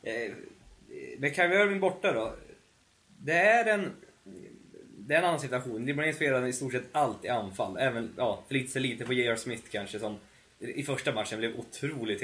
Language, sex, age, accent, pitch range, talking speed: Swedish, male, 20-39, native, 115-160 Hz, 180 wpm